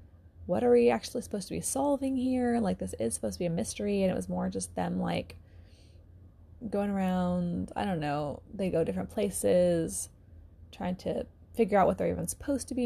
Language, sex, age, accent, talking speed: English, female, 20-39, American, 200 wpm